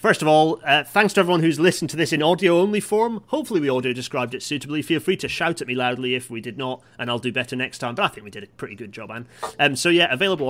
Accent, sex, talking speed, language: British, male, 285 wpm, English